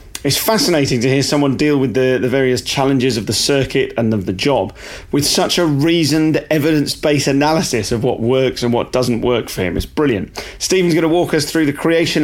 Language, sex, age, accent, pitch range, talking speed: English, male, 40-59, British, 120-150 Hz, 210 wpm